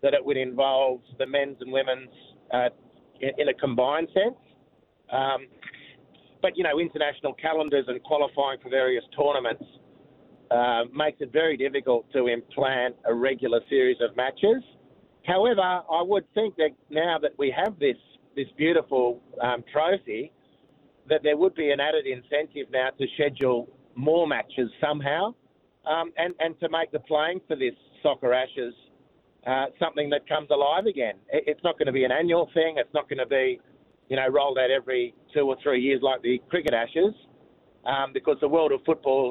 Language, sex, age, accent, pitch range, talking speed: English, male, 50-69, Australian, 130-160 Hz, 170 wpm